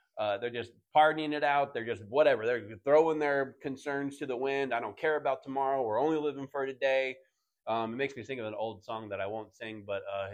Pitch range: 120-145 Hz